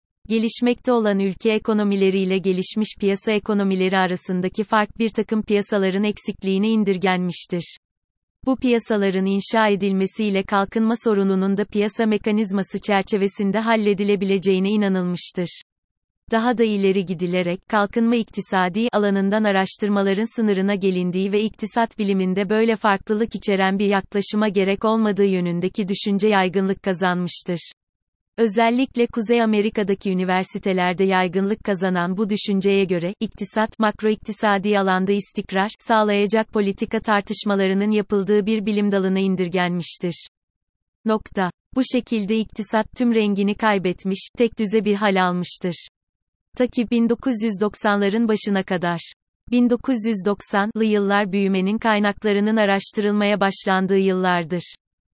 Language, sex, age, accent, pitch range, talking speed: Turkish, female, 30-49, native, 190-220 Hz, 105 wpm